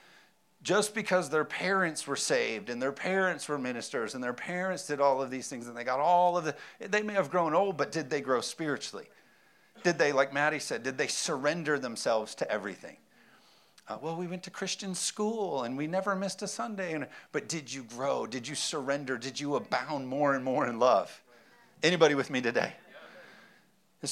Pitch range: 135-185 Hz